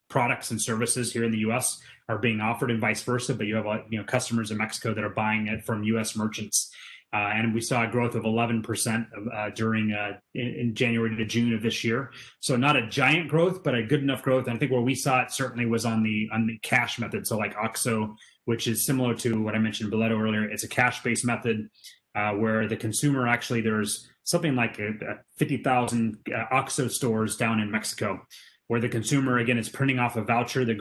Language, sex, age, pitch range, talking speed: English, male, 30-49, 110-125 Hz, 210 wpm